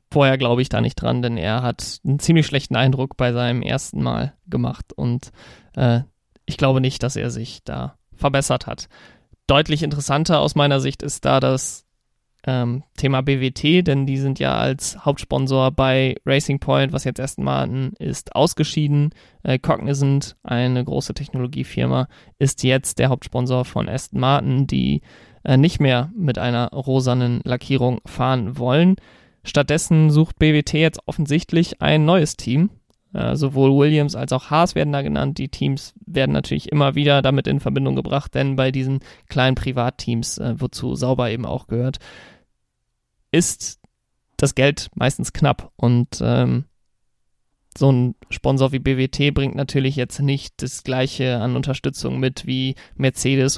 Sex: male